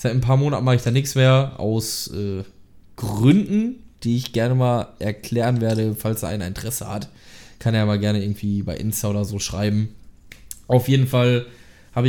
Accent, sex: German, male